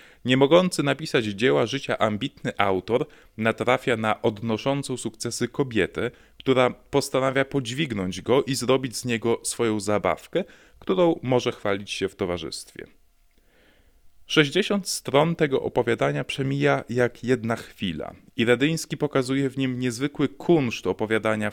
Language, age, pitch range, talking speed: Polish, 20-39, 100-135 Hz, 125 wpm